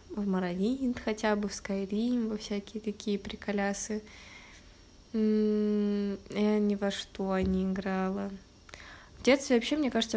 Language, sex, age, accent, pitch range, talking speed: Russian, female, 20-39, native, 200-220 Hz, 125 wpm